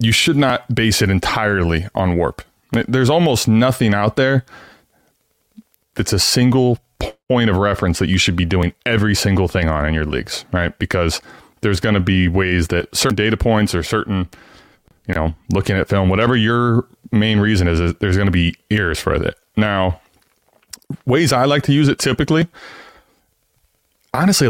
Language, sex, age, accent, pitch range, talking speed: English, male, 20-39, American, 90-120 Hz, 170 wpm